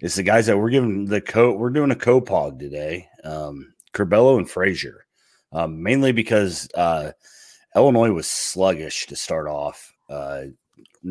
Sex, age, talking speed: male, 30-49, 150 wpm